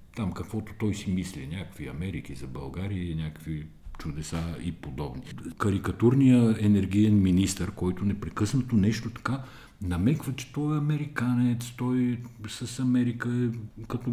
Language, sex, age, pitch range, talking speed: Bulgarian, male, 50-69, 90-120 Hz, 130 wpm